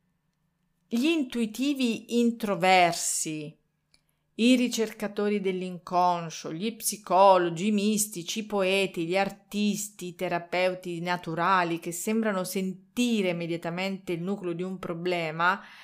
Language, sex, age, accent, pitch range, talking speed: Italian, female, 40-59, native, 170-215 Hz, 100 wpm